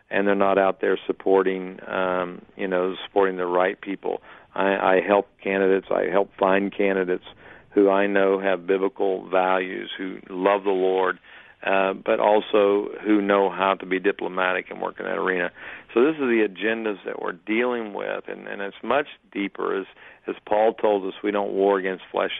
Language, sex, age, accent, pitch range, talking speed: English, male, 50-69, American, 95-105 Hz, 185 wpm